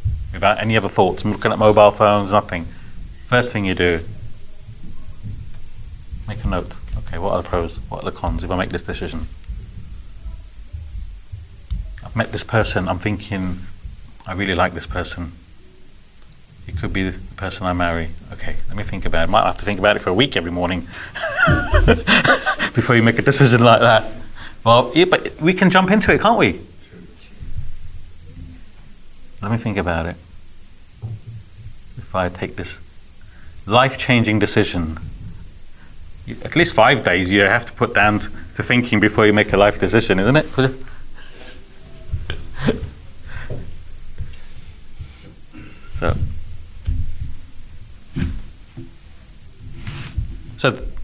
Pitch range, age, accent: 85-110 Hz, 30-49, British